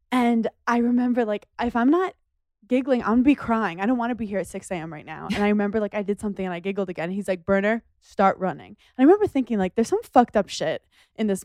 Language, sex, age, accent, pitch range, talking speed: English, female, 20-39, American, 185-220 Hz, 275 wpm